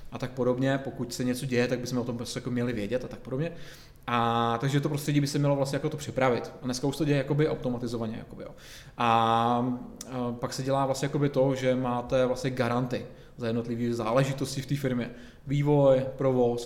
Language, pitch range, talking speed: Czech, 125-135 Hz, 205 wpm